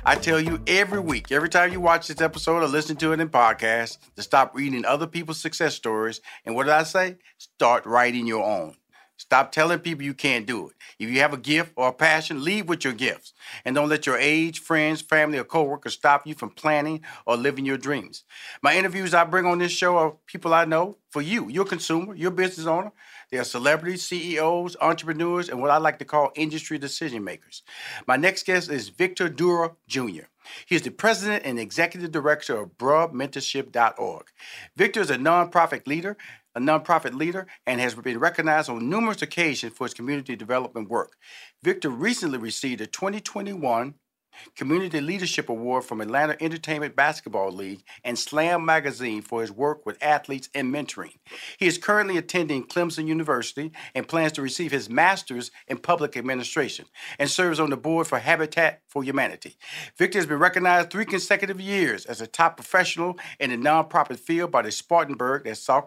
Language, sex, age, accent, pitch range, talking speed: English, male, 40-59, American, 135-175 Hz, 185 wpm